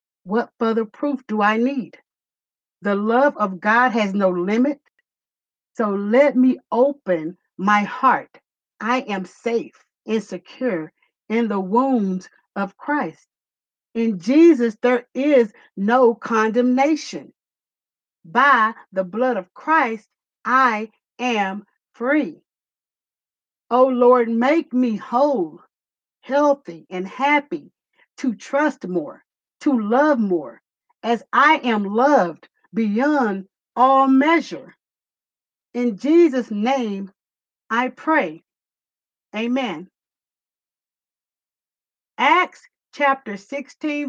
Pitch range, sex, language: 210-270 Hz, female, English